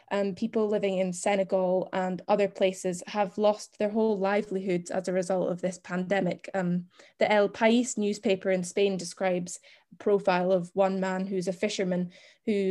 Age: 10-29